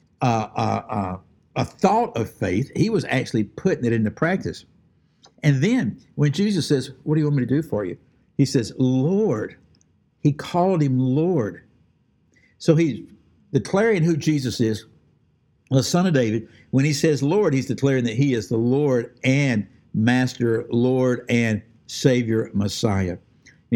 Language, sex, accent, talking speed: English, male, American, 160 wpm